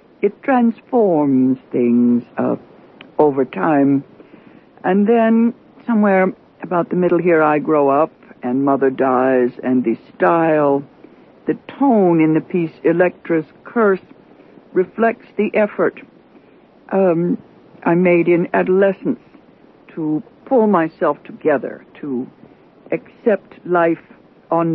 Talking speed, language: 110 wpm, English